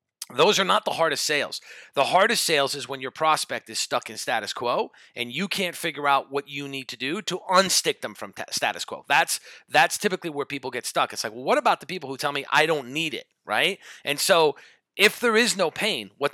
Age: 40-59